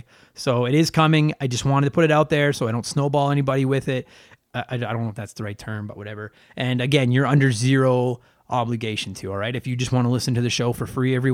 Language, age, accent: English, 20-39, American